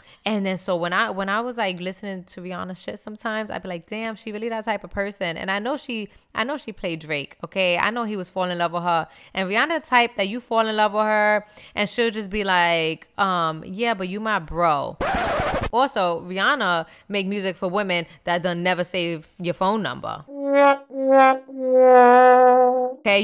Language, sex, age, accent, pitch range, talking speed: English, female, 20-39, American, 185-245 Hz, 200 wpm